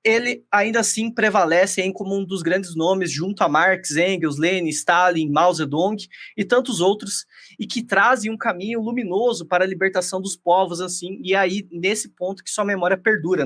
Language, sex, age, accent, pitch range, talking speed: Portuguese, male, 20-39, Brazilian, 160-200 Hz, 185 wpm